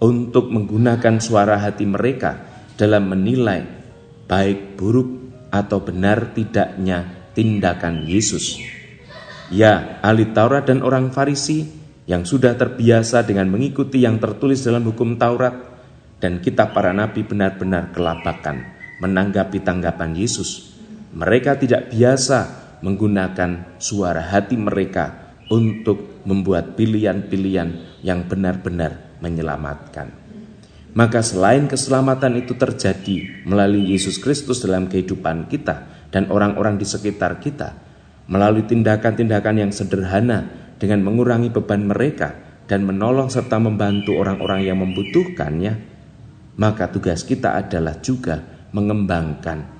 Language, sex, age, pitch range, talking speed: Indonesian, male, 30-49, 95-115 Hz, 105 wpm